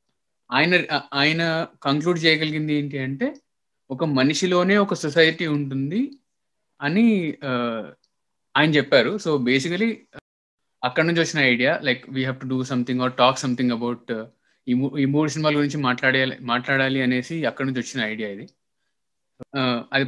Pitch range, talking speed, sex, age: 125-150 Hz, 125 wpm, male, 20-39